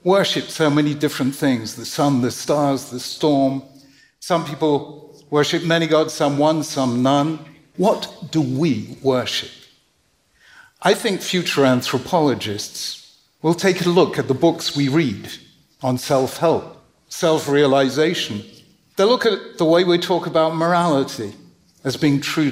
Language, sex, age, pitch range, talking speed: English, male, 60-79, 140-180 Hz, 140 wpm